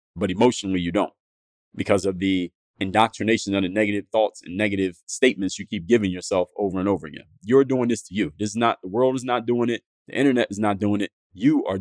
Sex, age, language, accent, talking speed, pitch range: male, 30-49, English, American, 230 wpm, 95-125 Hz